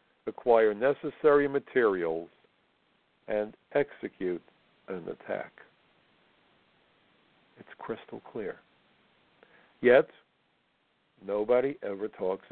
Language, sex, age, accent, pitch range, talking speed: English, male, 60-79, American, 105-155 Hz, 65 wpm